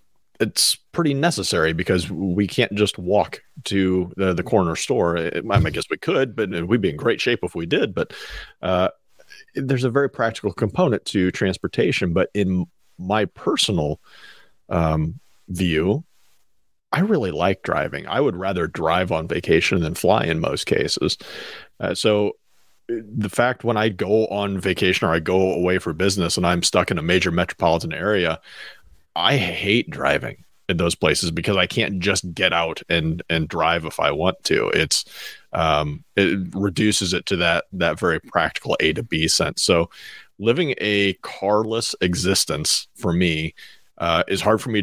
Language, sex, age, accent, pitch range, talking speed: English, male, 40-59, American, 85-105 Hz, 165 wpm